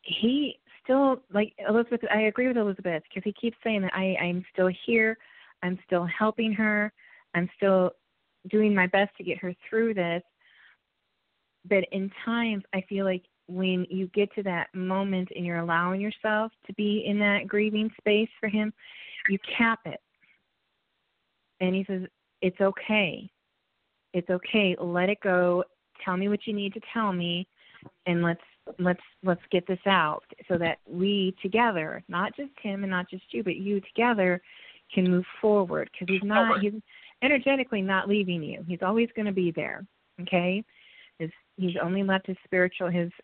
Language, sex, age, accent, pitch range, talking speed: English, female, 30-49, American, 175-210 Hz, 165 wpm